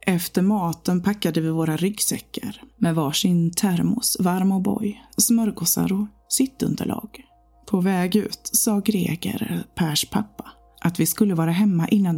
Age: 30-49